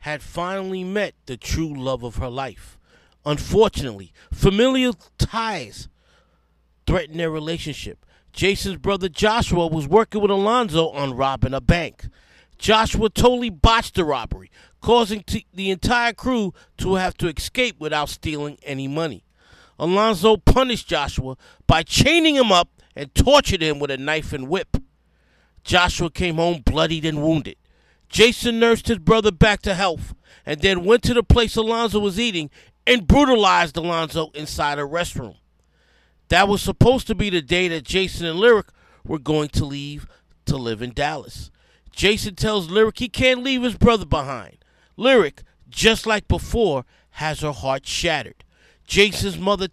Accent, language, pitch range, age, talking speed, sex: American, English, 145-215 Hz, 40-59, 150 wpm, male